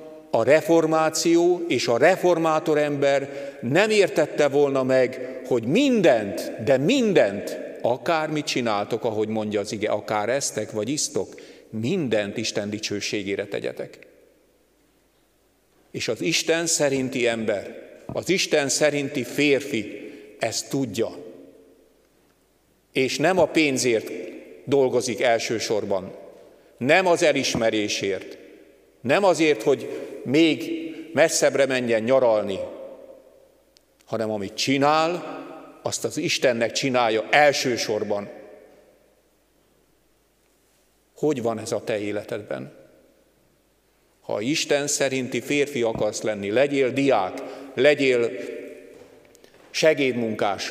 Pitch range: 115-160 Hz